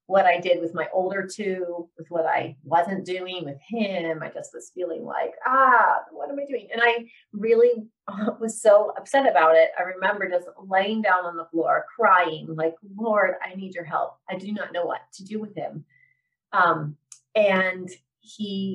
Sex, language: female, English